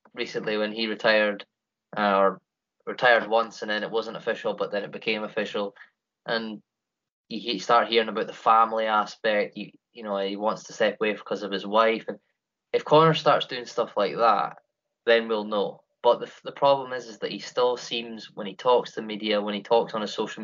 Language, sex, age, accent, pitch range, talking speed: English, male, 20-39, British, 100-140 Hz, 210 wpm